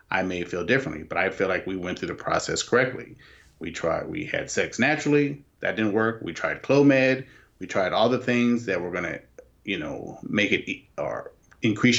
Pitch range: 90-110 Hz